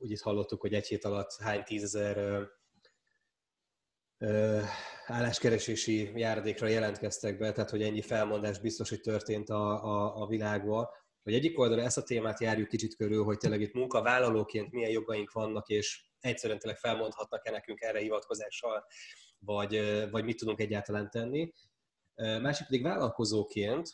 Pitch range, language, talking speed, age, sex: 105-115 Hz, Hungarian, 145 wpm, 20-39, male